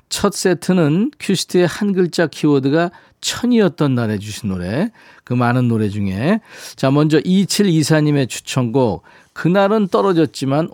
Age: 40-59